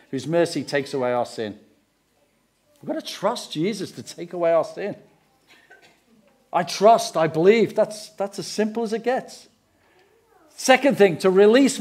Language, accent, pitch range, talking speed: English, British, 155-220 Hz, 165 wpm